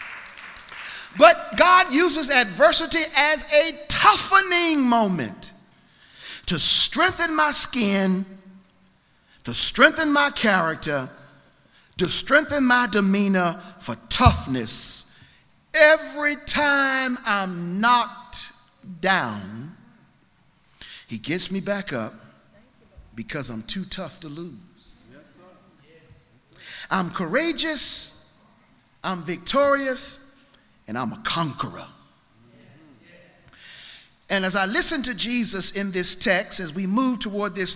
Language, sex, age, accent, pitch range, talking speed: English, male, 40-59, American, 180-275 Hz, 95 wpm